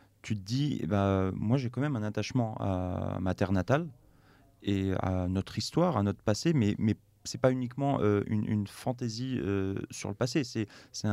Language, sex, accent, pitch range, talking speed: French, male, French, 100-125 Hz, 205 wpm